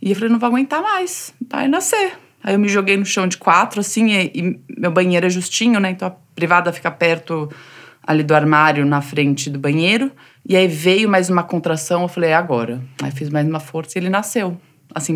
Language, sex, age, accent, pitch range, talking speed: Portuguese, female, 20-39, Brazilian, 170-250 Hz, 220 wpm